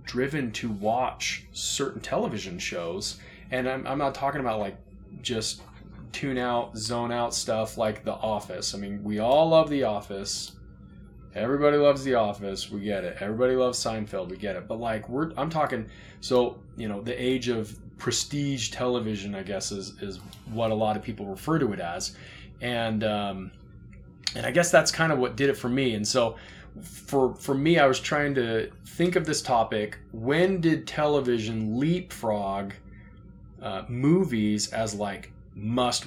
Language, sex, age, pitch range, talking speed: English, male, 30-49, 105-130 Hz, 170 wpm